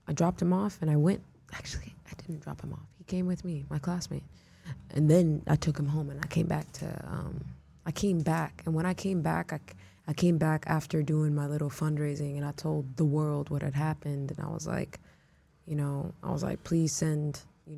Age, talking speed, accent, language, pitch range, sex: 20-39, 230 wpm, American, English, 145-170 Hz, female